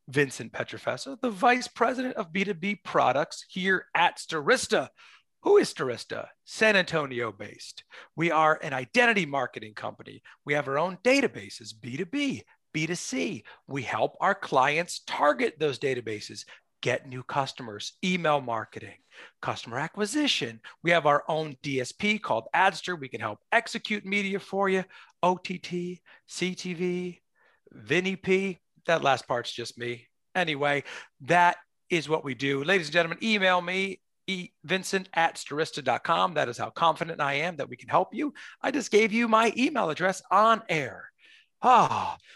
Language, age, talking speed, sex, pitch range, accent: English, 40-59, 145 wpm, male, 145-210 Hz, American